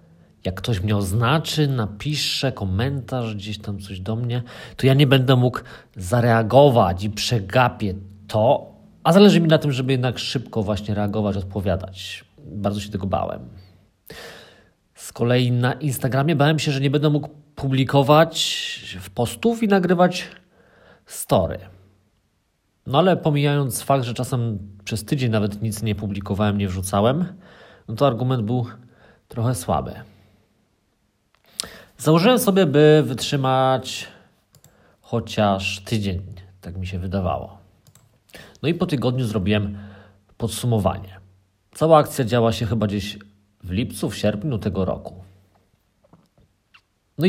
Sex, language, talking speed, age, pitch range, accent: male, Polish, 125 wpm, 40-59, 100-140 Hz, native